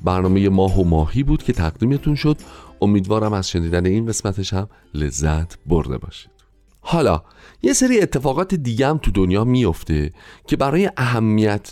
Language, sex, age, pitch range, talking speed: Persian, male, 40-59, 90-125 Hz, 150 wpm